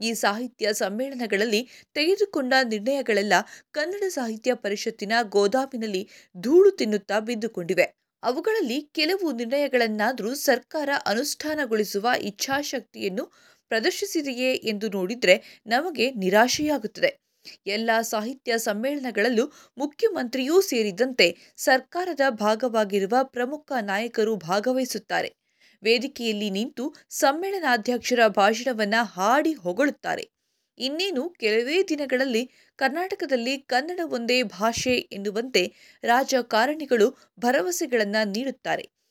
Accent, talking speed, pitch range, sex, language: native, 75 wpm, 220-285 Hz, female, Kannada